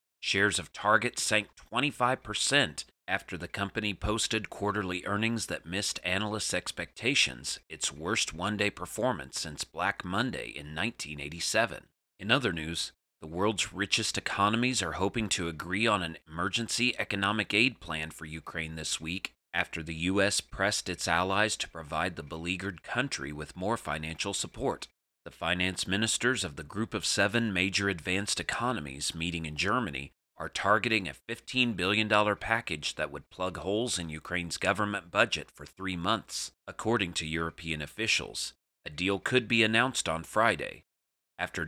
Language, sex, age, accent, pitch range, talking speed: English, male, 30-49, American, 85-105 Hz, 150 wpm